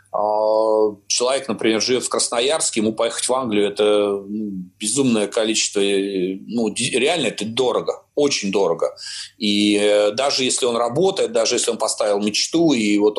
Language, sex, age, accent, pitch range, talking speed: Russian, male, 30-49, native, 110-165 Hz, 140 wpm